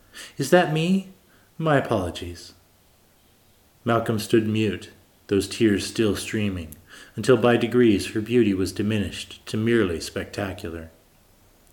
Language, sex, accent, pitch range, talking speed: English, male, American, 90-115 Hz, 115 wpm